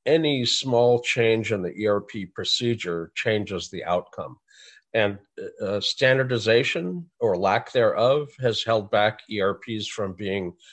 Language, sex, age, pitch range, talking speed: English, male, 50-69, 105-140 Hz, 125 wpm